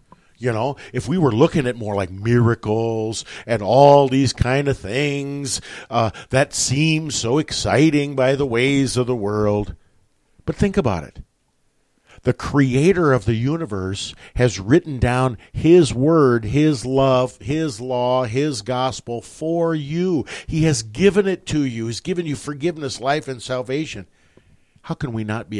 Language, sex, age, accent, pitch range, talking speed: English, male, 50-69, American, 105-140 Hz, 155 wpm